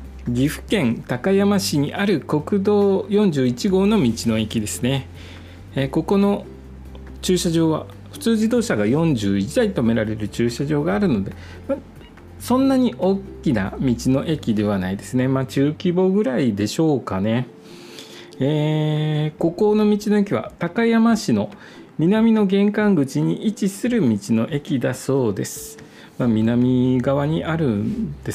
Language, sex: Japanese, male